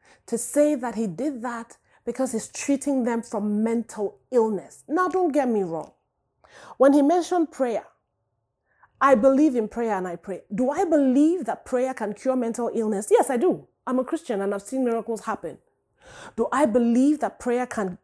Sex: female